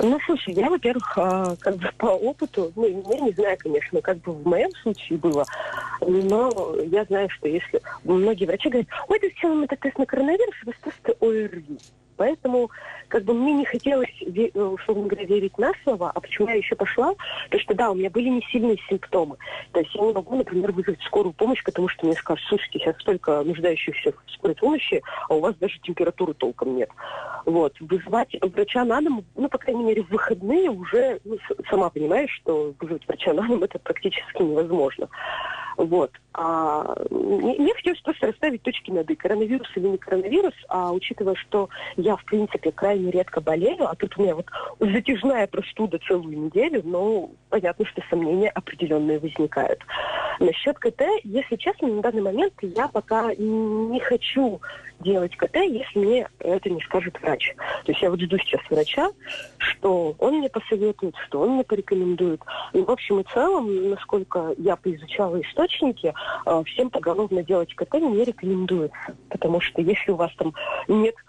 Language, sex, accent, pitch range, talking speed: Russian, female, native, 180-270 Hz, 175 wpm